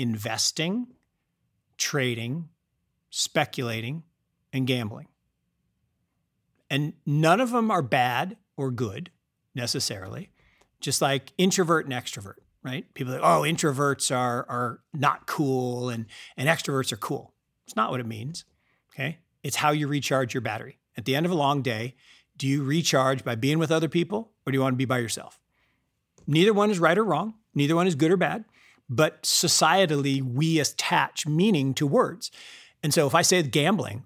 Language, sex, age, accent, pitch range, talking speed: English, male, 50-69, American, 130-170 Hz, 165 wpm